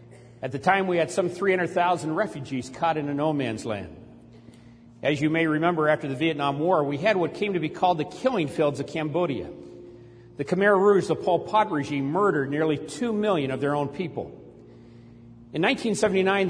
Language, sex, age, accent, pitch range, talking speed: English, male, 50-69, American, 130-185 Hz, 185 wpm